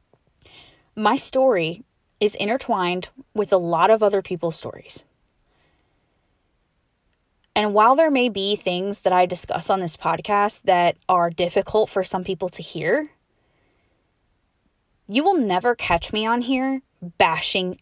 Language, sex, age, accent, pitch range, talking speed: English, female, 20-39, American, 170-235 Hz, 130 wpm